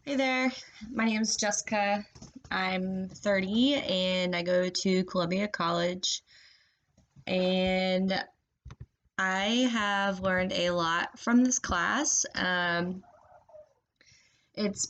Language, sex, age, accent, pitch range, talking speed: English, female, 20-39, American, 175-205 Hz, 100 wpm